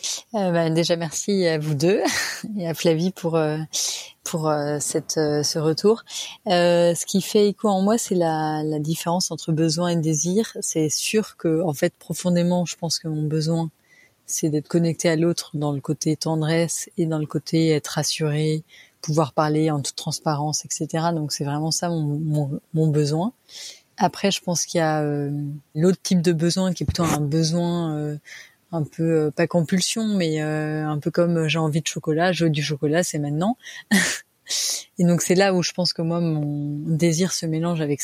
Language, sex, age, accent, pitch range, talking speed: French, female, 30-49, French, 155-175 Hz, 195 wpm